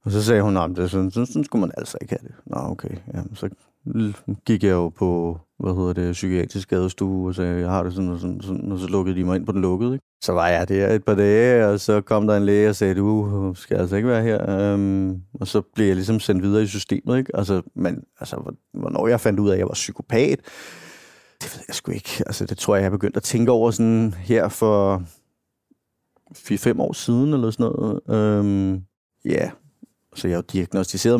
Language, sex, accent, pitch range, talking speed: Danish, male, native, 95-110 Hz, 225 wpm